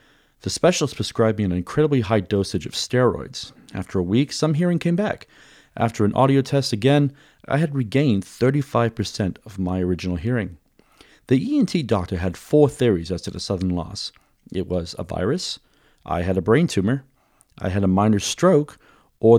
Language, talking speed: English, 175 wpm